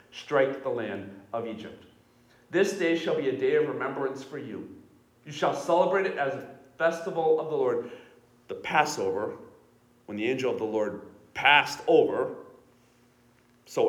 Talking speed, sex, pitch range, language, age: 155 wpm, male, 120-150 Hz, English, 40-59